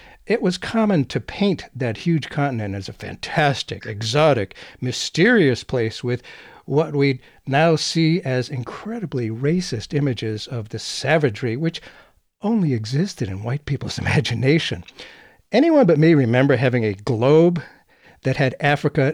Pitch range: 120-160 Hz